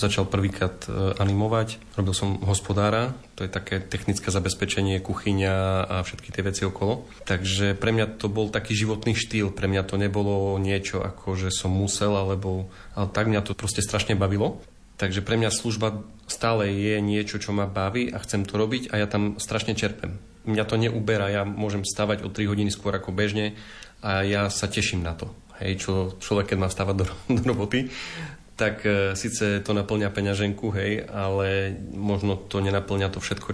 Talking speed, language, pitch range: 180 wpm, Slovak, 100-110 Hz